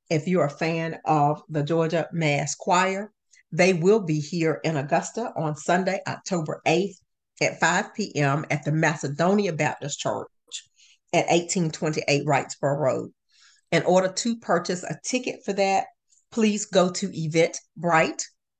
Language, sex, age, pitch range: English, female, 40-59, 155-185 Hz